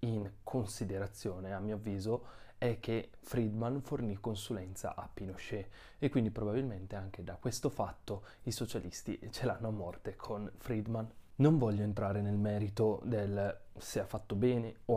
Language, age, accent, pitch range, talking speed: Italian, 20-39, native, 100-115 Hz, 150 wpm